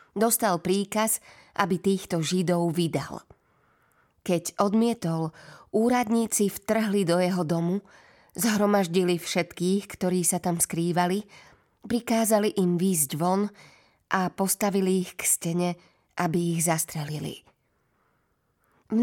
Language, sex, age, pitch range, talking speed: Slovak, female, 20-39, 170-200 Hz, 100 wpm